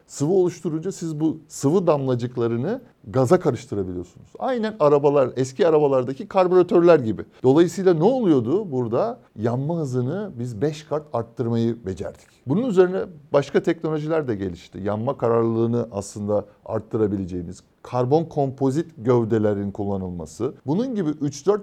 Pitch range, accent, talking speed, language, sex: 110-150 Hz, native, 115 wpm, Turkish, male